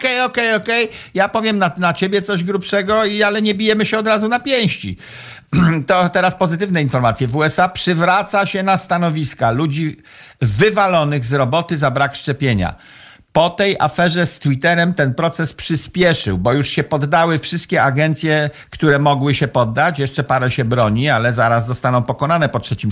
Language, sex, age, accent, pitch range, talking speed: Polish, male, 50-69, native, 130-170 Hz, 165 wpm